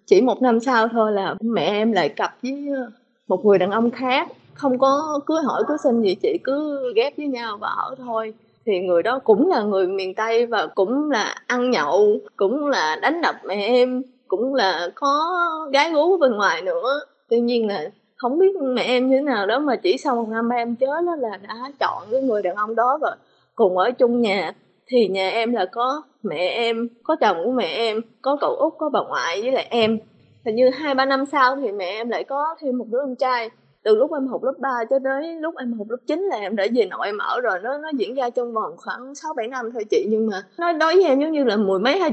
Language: Vietnamese